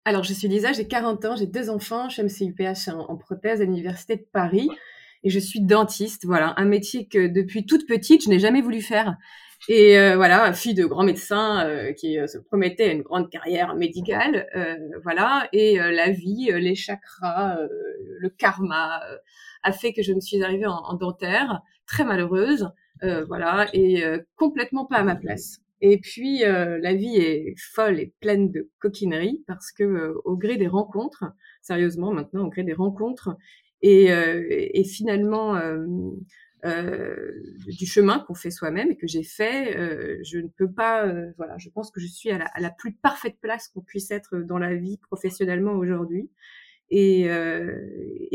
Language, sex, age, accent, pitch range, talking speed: French, female, 20-39, French, 180-220 Hz, 190 wpm